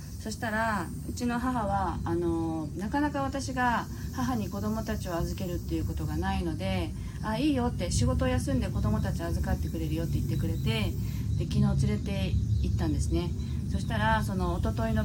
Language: Japanese